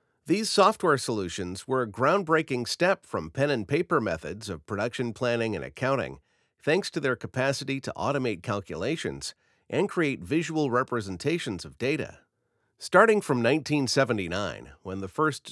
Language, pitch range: English, 105-140 Hz